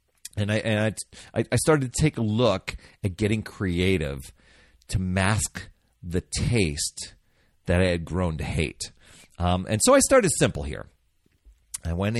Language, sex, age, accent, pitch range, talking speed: English, male, 40-59, American, 85-115 Hz, 155 wpm